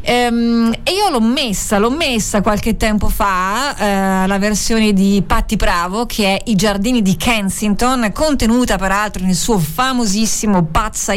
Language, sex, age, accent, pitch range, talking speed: Italian, female, 30-49, native, 195-235 Hz, 145 wpm